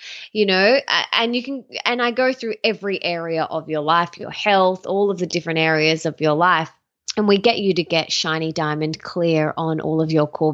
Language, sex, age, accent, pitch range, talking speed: English, female, 20-39, Australian, 165-220 Hz, 215 wpm